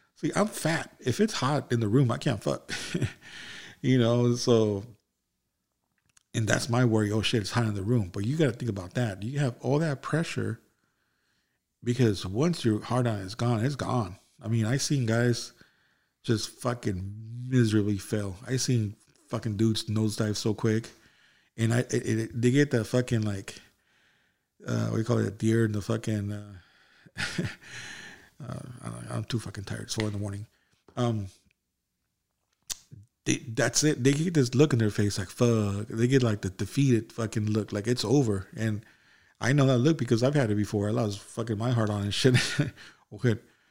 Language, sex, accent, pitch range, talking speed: English, male, American, 105-125 Hz, 185 wpm